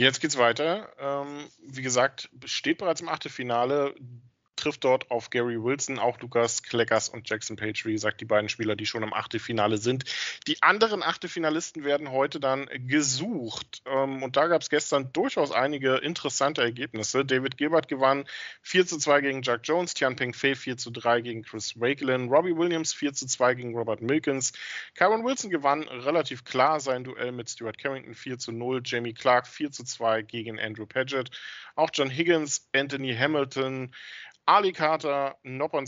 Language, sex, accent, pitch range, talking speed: German, male, German, 125-160 Hz, 165 wpm